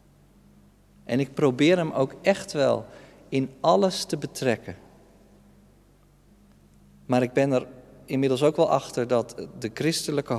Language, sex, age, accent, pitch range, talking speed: Dutch, male, 50-69, Dutch, 90-140 Hz, 125 wpm